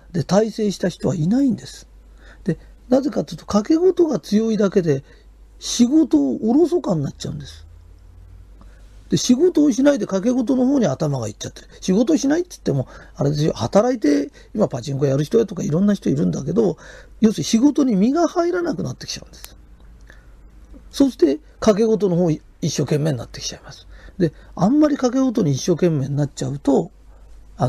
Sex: male